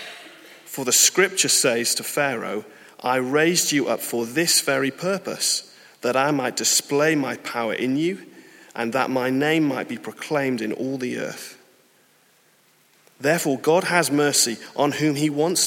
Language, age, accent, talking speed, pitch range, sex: English, 30-49, British, 155 wpm, 120-155 Hz, male